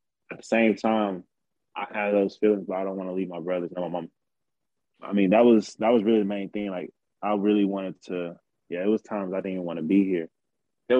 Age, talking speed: 20-39, 250 wpm